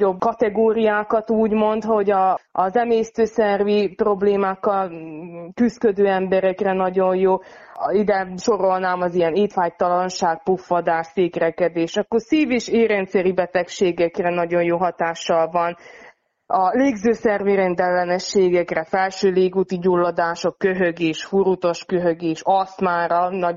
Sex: female